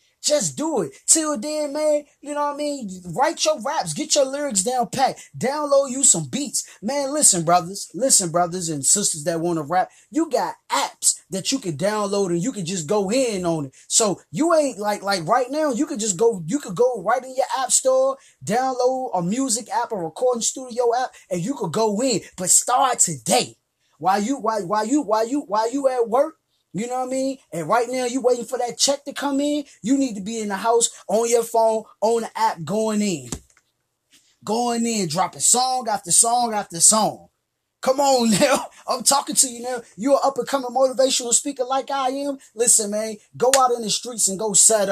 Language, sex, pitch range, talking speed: English, male, 195-270 Hz, 215 wpm